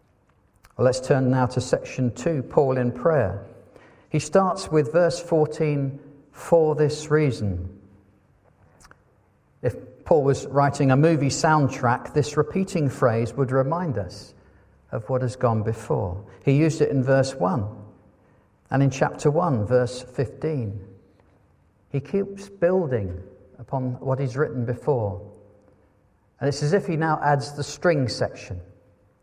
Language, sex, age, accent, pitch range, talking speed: English, male, 50-69, British, 105-145 Hz, 135 wpm